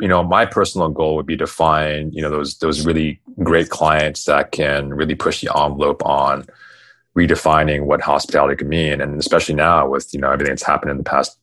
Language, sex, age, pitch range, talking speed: English, male, 30-49, 75-85 Hz, 210 wpm